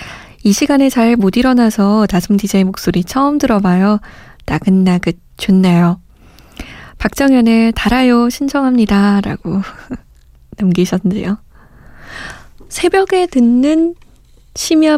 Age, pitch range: 20-39, 195-255 Hz